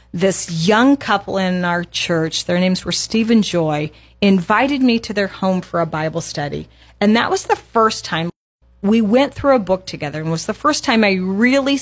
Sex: female